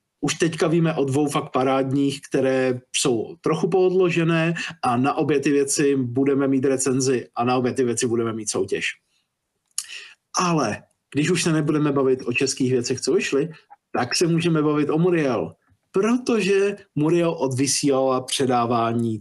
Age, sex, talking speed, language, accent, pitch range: 50-69, male, 150 wpm, Czech, native, 130-170 Hz